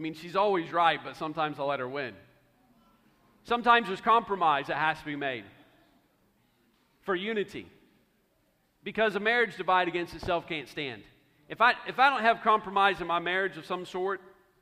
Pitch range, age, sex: 170-215 Hz, 40-59, male